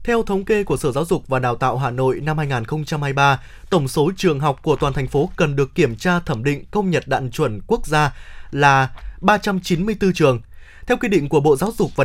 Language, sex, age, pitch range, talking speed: Vietnamese, male, 20-39, 145-190 Hz, 225 wpm